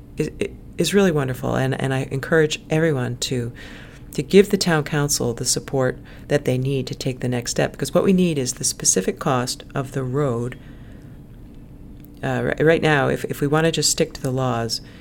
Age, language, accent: 40-59, English, American